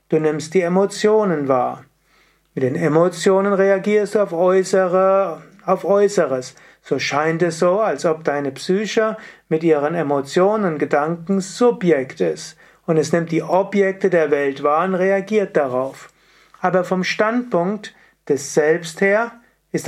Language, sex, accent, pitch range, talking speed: German, male, German, 155-190 Hz, 140 wpm